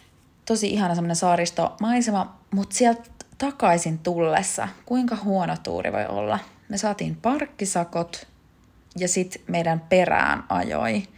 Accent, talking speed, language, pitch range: native, 115 wpm, Finnish, 155-205 Hz